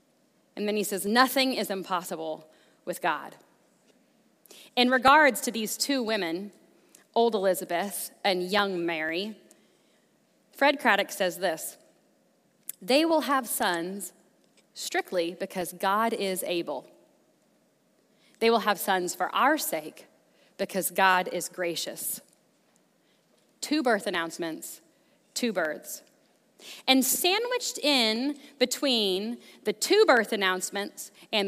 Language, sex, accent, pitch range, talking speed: English, female, American, 200-280 Hz, 110 wpm